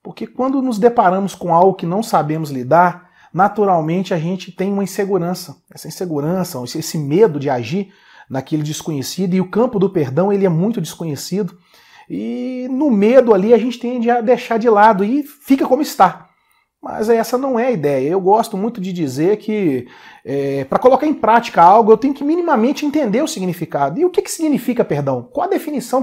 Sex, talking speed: male, 190 wpm